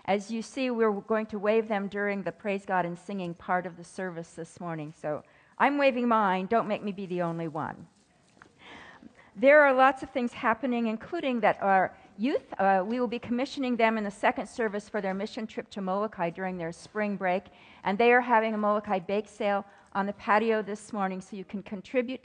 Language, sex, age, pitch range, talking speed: English, female, 50-69, 190-230 Hz, 210 wpm